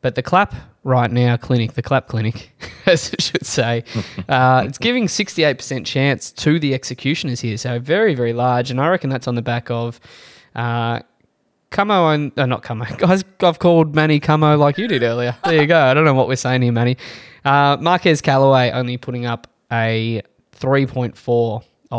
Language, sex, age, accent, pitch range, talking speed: English, male, 20-39, Australian, 120-140 Hz, 190 wpm